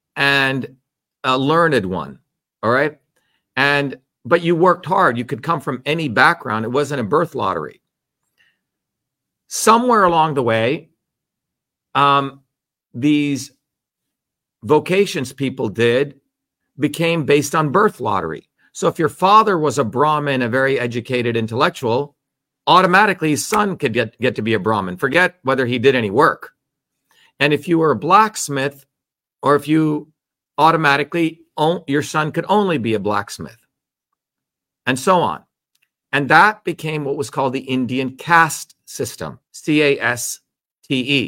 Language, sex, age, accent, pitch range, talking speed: English, male, 50-69, American, 130-160 Hz, 135 wpm